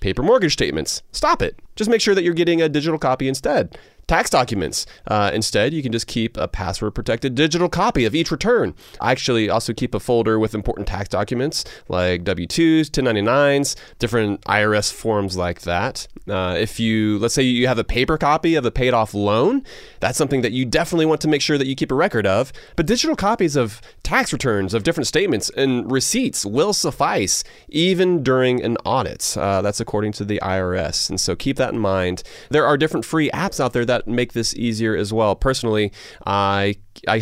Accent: American